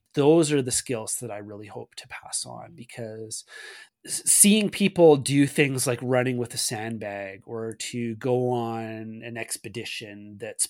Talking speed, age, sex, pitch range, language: 155 wpm, 30-49, male, 115-140 Hz, English